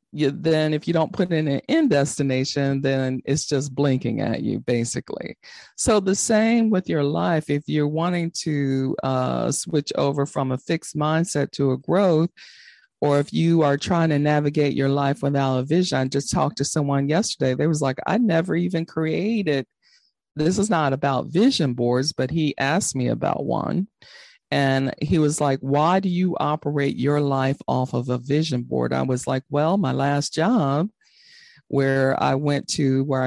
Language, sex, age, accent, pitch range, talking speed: English, female, 40-59, American, 135-165 Hz, 180 wpm